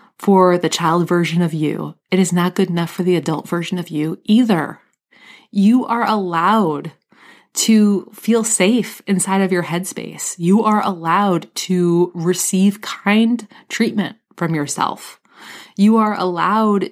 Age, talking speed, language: 20-39, 140 wpm, English